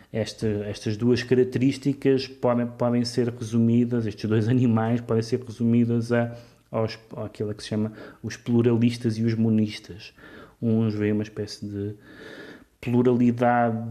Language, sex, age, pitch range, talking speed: Portuguese, male, 30-49, 105-125 Hz, 140 wpm